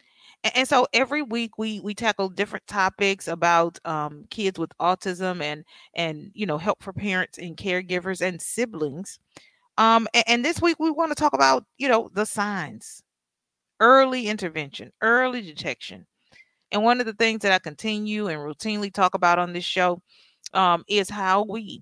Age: 40-59